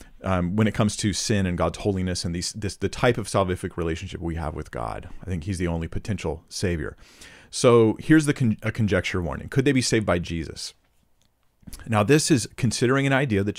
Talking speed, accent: 195 wpm, American